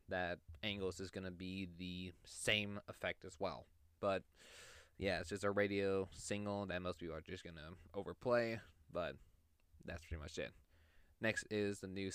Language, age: English, 20-39